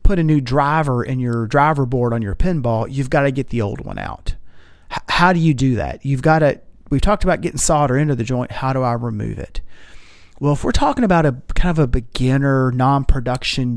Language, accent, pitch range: English, American, 125-155 Hz